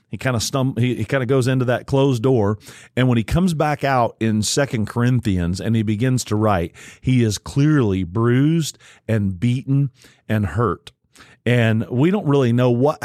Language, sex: English, male